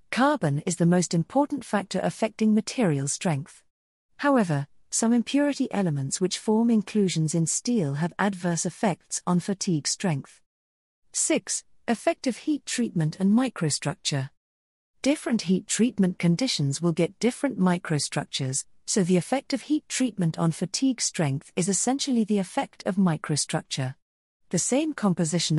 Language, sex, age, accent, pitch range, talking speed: English, female, 40-59, British, 155-225 Hz, 130 wpm